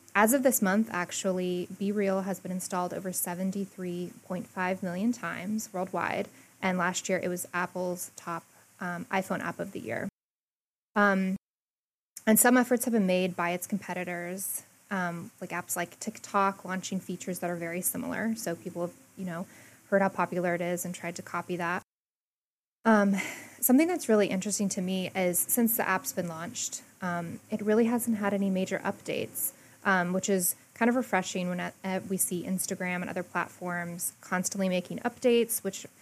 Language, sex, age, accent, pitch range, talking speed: English, female, 20-39, American, 180-205 Hz, 175 wpm